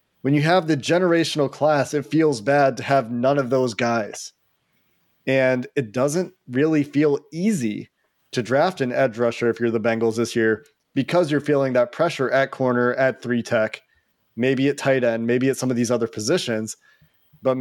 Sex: male